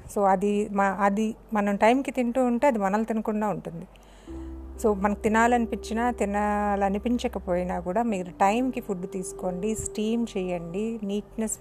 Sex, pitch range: female, 195-235 Hz